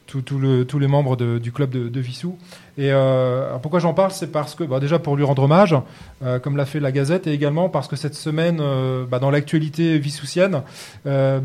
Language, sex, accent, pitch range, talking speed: French, male, French, 130-160 Hz, 210 wpm